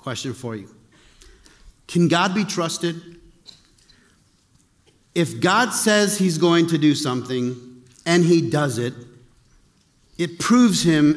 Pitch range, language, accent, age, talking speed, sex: 150-210 Hz, English, American, 40-59, 120 wpm, male